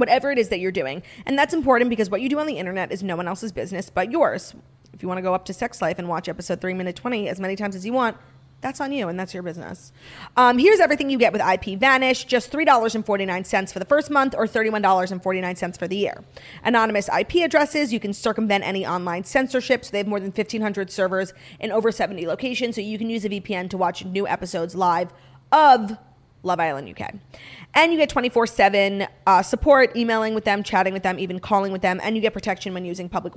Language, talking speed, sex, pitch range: English, 230 wpm, female, 185-250 Hz